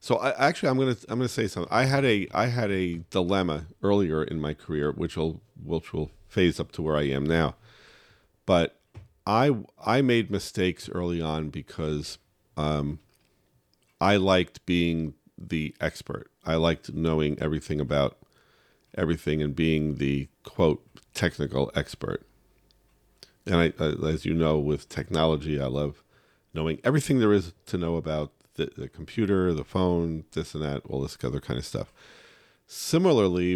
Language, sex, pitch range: English, male, 75-90 Hz